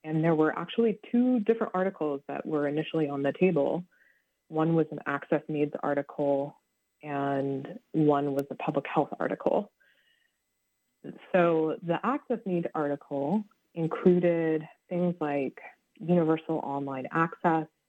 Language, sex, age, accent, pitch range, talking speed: English, female, 20-39, American, 150-185 Hz, 125 wpm